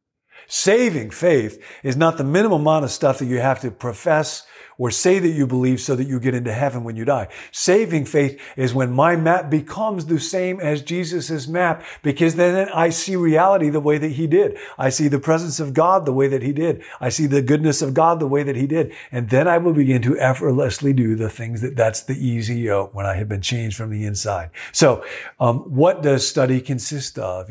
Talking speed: 220 wpm